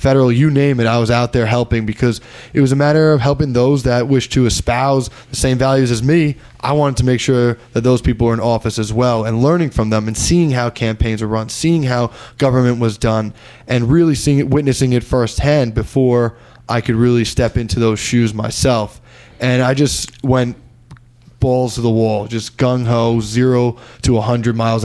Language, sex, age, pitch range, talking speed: English, male, 10-29, 115-130 Hz, 205 wpm